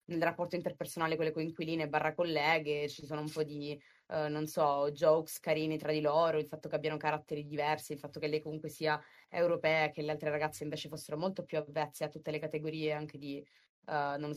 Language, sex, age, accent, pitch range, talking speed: Italian, female, 20-39, native, 145-160 Hz, 215 wpm